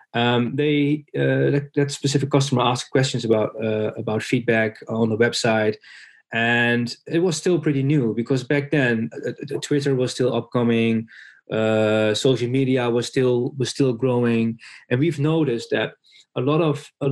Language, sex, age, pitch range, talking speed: English, male, 20-39, 115-140 Hz, 160 wpm